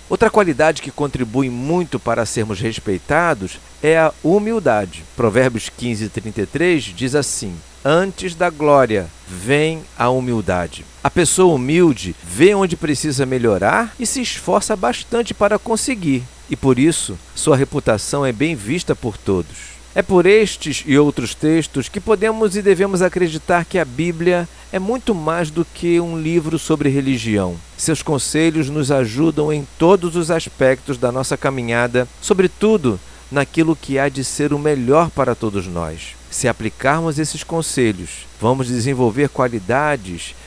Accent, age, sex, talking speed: Brazilian, 50-69, male, 145 wpm